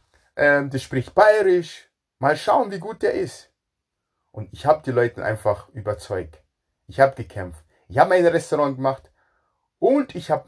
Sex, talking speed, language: male, 155 wpm, German